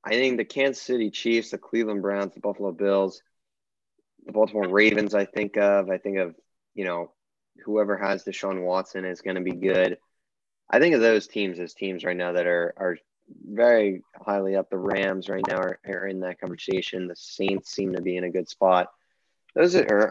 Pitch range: 95-110 Hz